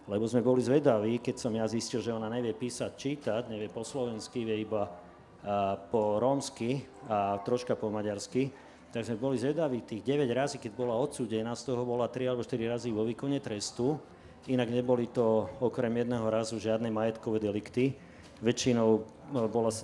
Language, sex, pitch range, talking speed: Slovak, male, 110-125 Hz, 170 wpm